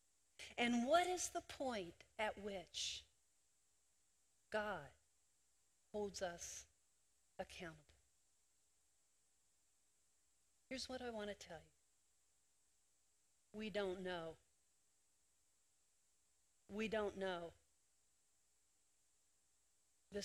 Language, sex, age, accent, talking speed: English, female, 40-59, American, 75 wpm